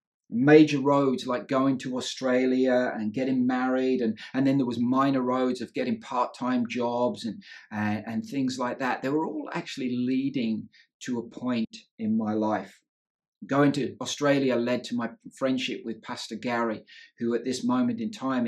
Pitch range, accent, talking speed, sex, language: 115-145 Hz, British, 175 wpm, male, English